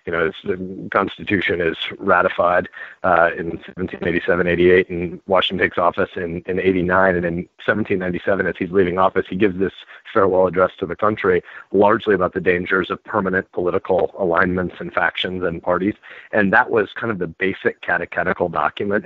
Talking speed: 165 wpm